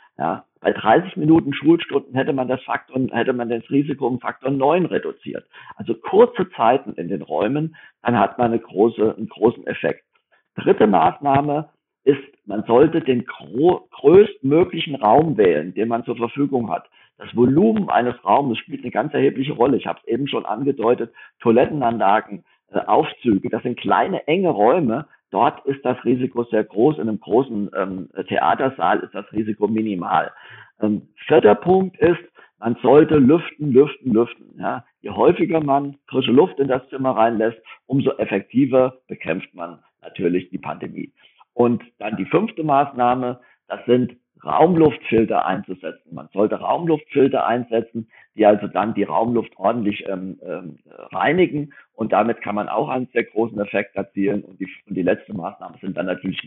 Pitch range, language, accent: 105-140 Hz, German, German